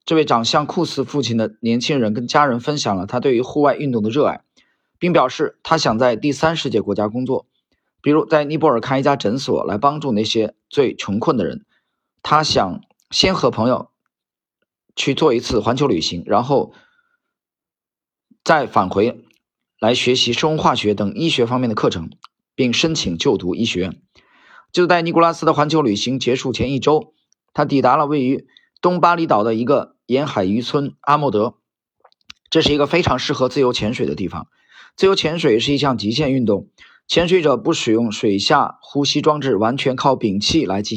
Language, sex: Chinese, male